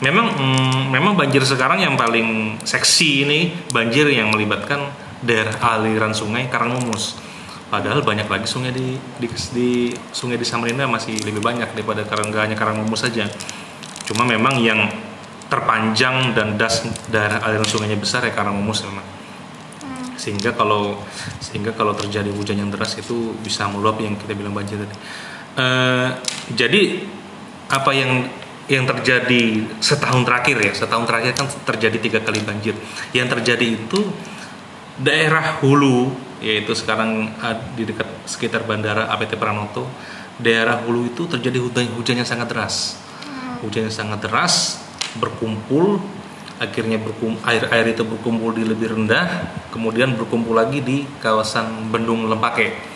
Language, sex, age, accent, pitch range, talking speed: Indonesian, male, 30-49, native, 110-125 Hz, 135 wpm